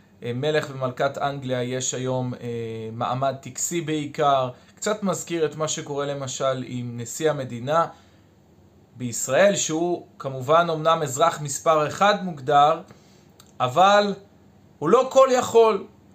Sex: male